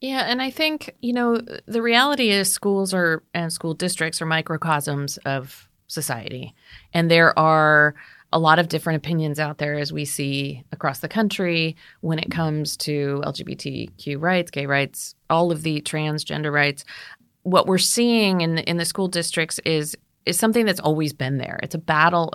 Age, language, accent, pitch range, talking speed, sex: 30-49, English, American, 155-195 Hz, 175 wpm, female